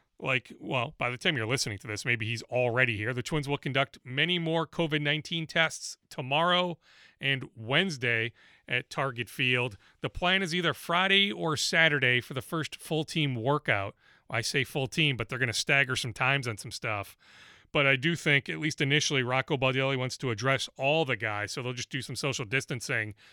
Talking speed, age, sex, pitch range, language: 190 wpm, 30-49, male, 125-160 Hz, English